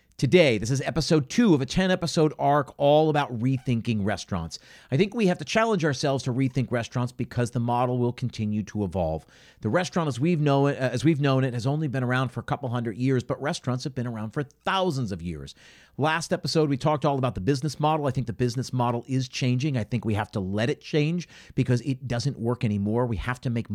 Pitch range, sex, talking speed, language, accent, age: 115-150 Hz, male, 220 wpm, English, American, 40-59